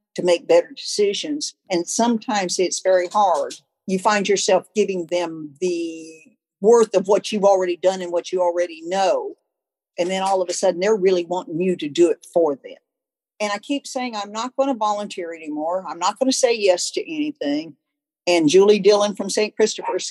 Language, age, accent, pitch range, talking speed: English, 50-69, American, 180-265 Hz, 195 wpm